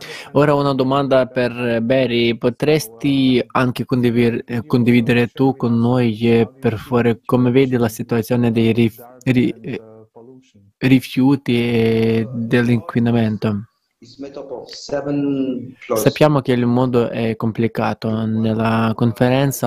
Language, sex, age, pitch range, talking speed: Italian, male, 20-39, 115-130 Hz, 95 wpm